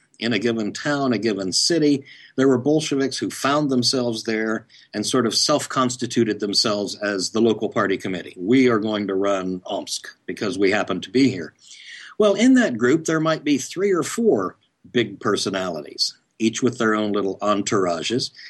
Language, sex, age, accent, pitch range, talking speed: English, male, 50-69, American, 105-145 Hz, 175 wpm